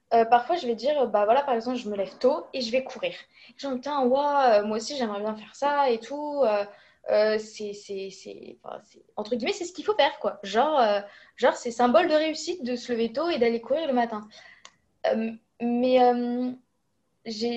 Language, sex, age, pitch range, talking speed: French, female, 20-39, 225-275 Hz, 215 wpm